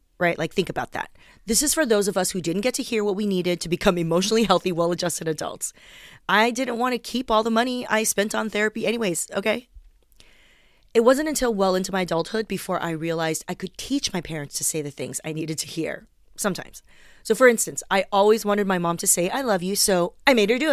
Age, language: 30-49, English